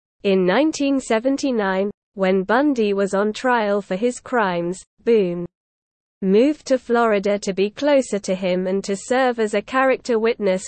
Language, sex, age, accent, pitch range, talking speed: English, female, 20-39, British, 195-245 Hz, 145 wpm